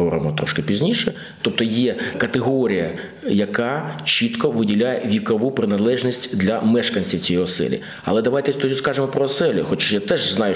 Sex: male